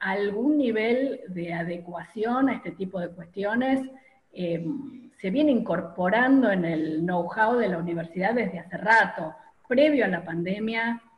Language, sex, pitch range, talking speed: Spanish, female, 185-250 Hz, 140 wpm